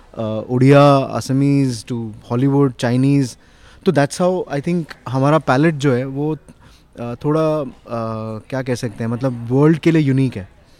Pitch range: 120-150 Hz